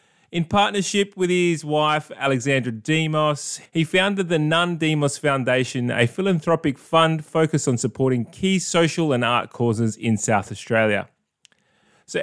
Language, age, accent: English, 20-39, Australian